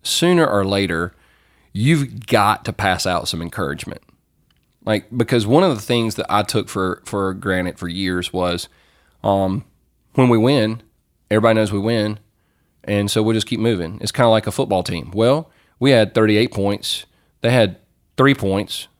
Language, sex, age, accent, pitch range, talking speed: English, male, 30-49, American, 95-120 Hz, 175 wpm